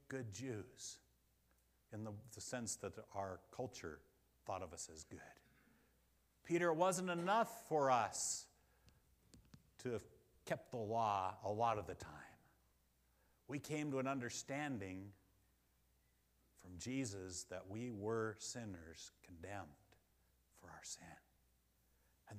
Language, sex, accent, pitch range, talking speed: English, male, American, 90-140 Hz, 125 wpm